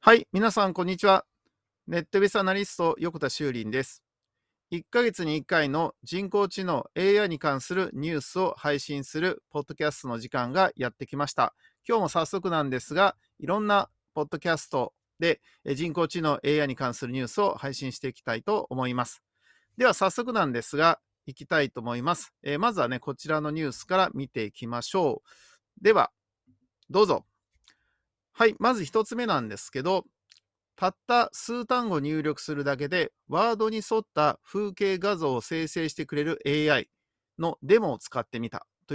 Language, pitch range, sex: Japanese, 130-195 Hz, male